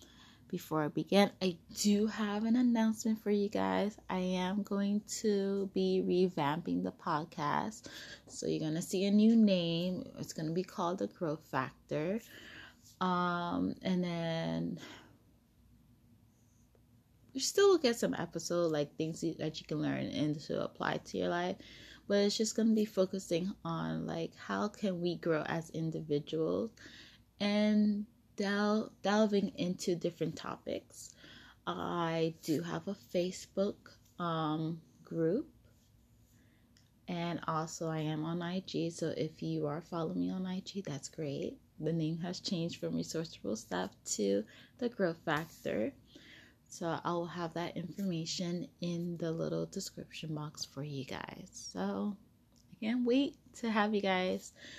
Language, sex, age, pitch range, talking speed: English, female, 20-39, 150-200 Hz, 145 wpm